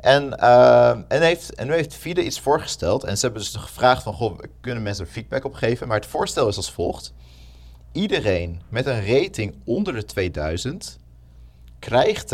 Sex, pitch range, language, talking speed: male, 75-110 Hz, Dutch, 170 wpm